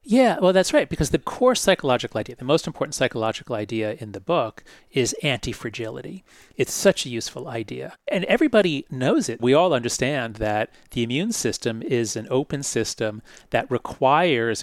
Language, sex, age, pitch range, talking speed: English, male, 40-59, 120-155 Hz, 170 wpm